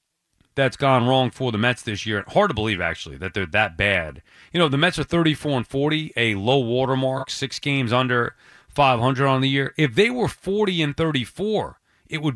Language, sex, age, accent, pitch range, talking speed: English, male, 30-49, American, 130-170 Hz, 205 wpm